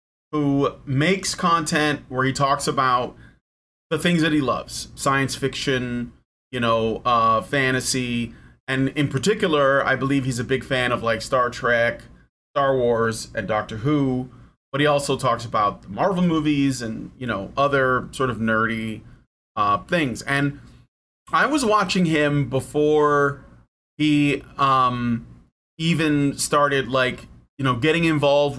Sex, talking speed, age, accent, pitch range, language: male, 145 wpm, 30-49, American, 120-150 Hz, English